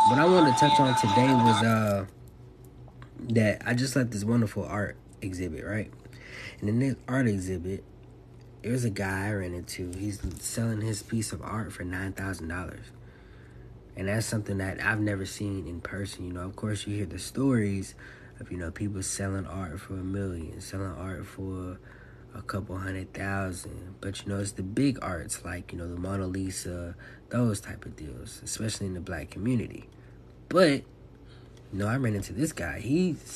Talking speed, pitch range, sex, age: 180 wpm, 95-120 Hz, male, 20-39